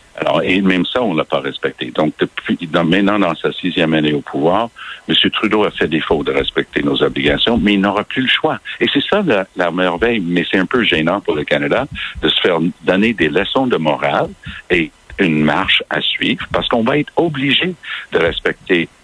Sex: male